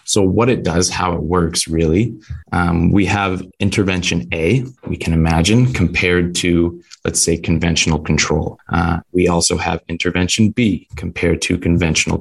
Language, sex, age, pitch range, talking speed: English, male, 20-39, 85-95 Hz, 150 wpm